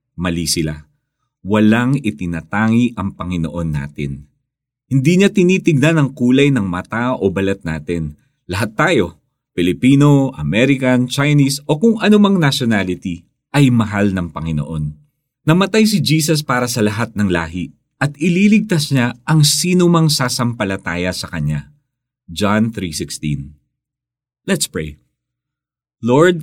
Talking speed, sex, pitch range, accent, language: 115 wpm, male, 95-140 Hz, native, Filipino